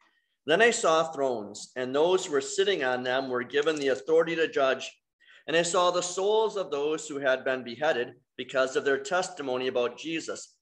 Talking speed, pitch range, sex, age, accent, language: 190 wpm, 125-165 Hz, male, 40-59, American, English